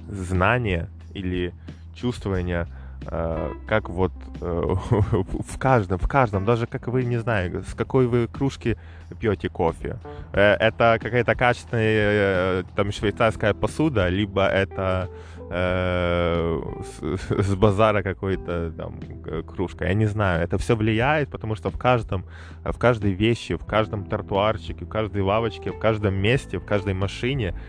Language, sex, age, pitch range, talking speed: Russian, male, 20-39, 90-115 Hz, 135 wpm